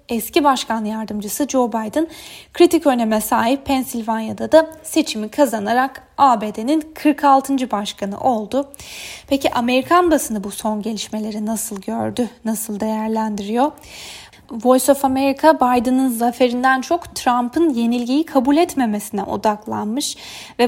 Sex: female